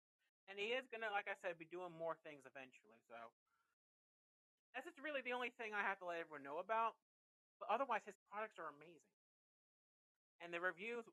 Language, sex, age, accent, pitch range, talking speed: English, male, 30-49, American, 155-225 Hz, 195 wpm